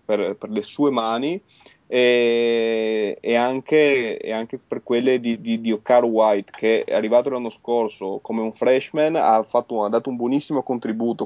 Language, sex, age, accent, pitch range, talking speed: Italian, male, 20-39, native, 110-130 Hz, 170 wpm